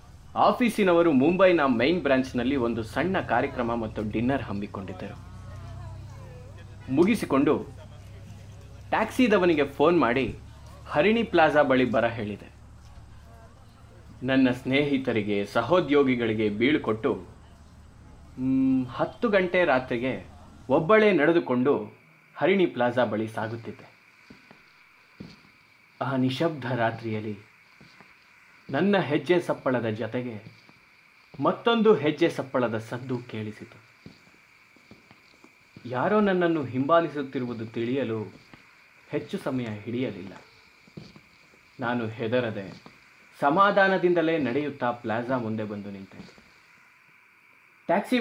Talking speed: 75 wpm